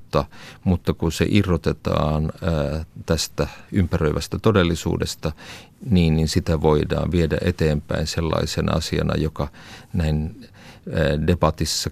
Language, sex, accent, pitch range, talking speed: Finnish, male, native, 75-90 Hz, 95 wpm